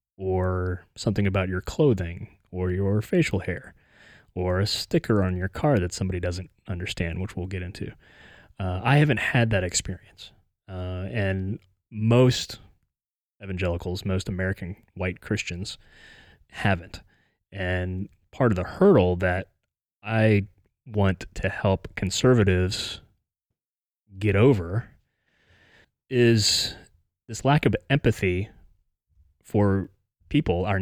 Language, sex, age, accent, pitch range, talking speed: English, male, 30-49, American, 90-110 Hz, 115 wpm